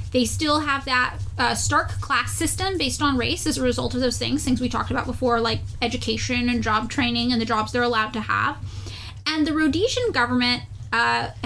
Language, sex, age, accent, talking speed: English, female, 10-29, American, 205 wpm